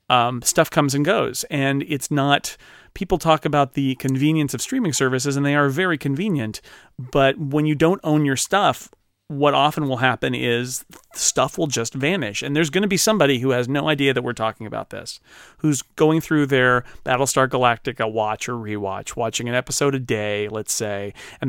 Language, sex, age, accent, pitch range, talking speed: English, male, 40-59, American, 120-145 Hz, 190 wpm